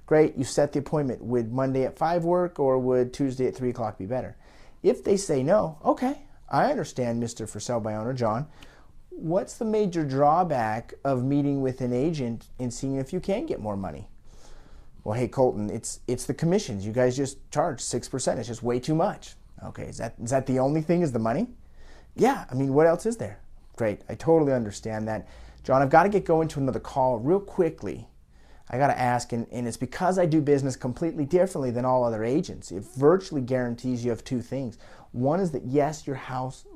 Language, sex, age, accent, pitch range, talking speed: English, male, 30-49, American, 120-160 Hz, 210 wpm